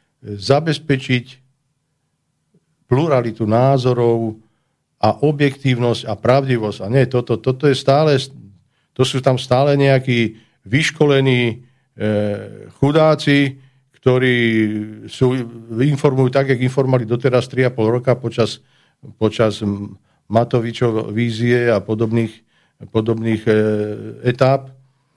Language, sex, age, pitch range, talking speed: Slovak, male, 50-69, 110-135 Hz, 95 wpm